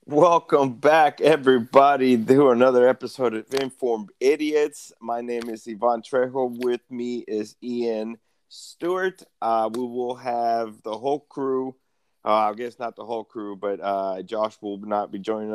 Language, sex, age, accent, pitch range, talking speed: English, male, 30-49, American, 105-125 Hz, 155 wpm